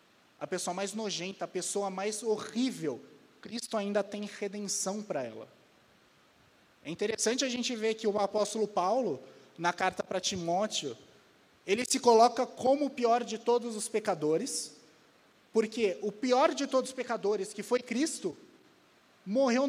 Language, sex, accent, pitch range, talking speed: Portuguese, male, Brazilian, 175-220 Hz, 145 wpm